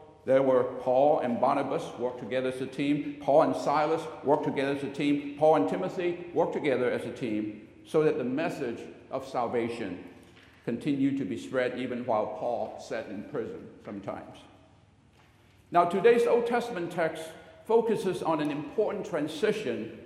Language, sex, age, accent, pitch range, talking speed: English, male, 60-79, American, 130-175 Hz, 160 wpm